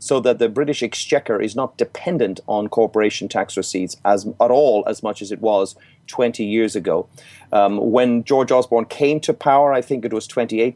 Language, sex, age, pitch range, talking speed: English, male, 30-49, 110-140 Hz, 195 wpm